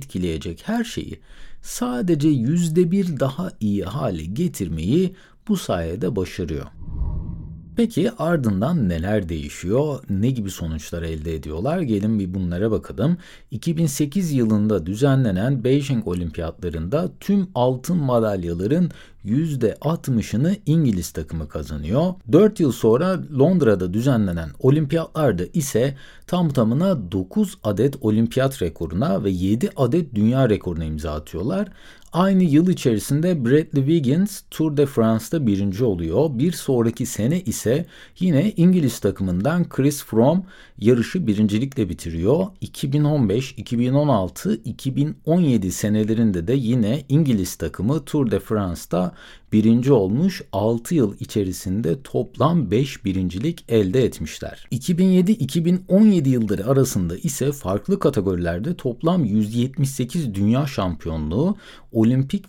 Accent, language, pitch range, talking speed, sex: native, Turkish, 95-160 Hz, 105 wpm, male